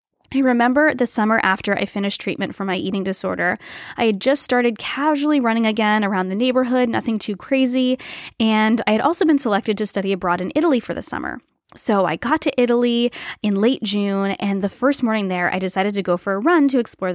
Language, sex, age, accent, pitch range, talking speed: English, female, 20-39, American, 200-265 Hz, 215 wpm